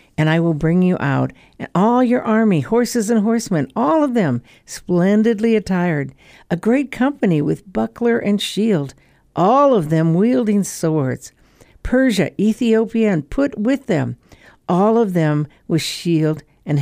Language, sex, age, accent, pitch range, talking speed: English, female, 60-79, American, 160-225 Hz, 150 wpm